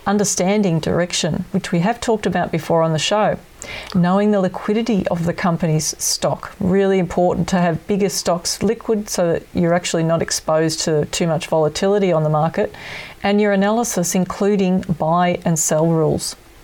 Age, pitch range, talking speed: 40-59, 170-205 Hz, 165 wpm